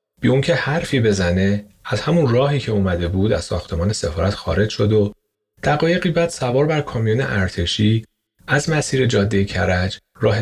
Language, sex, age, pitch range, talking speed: Persian, male, 30-49, 95-130 Hz, 150 wpm